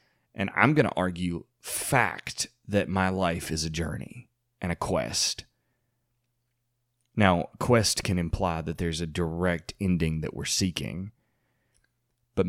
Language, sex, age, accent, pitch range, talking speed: English, male, 30-49, American, 95-120 Hz, 135 wpm